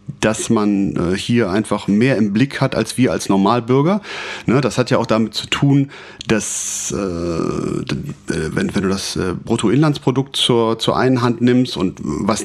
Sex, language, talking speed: male, German, 145 wpm